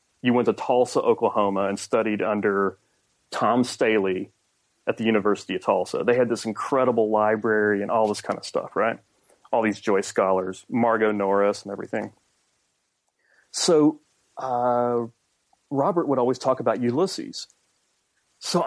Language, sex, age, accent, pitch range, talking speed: English, male, 30-49, American, 105-135 Hz, 140 wpm